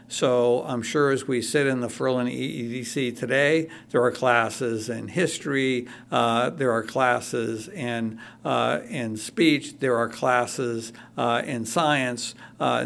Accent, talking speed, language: American, 145 wpm, English